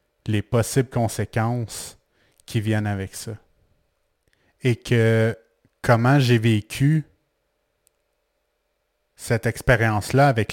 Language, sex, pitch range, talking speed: French, male, 105-120 Hz, 85 wpm